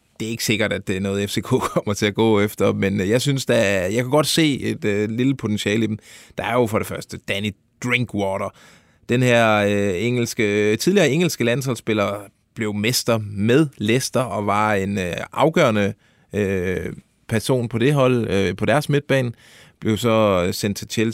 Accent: native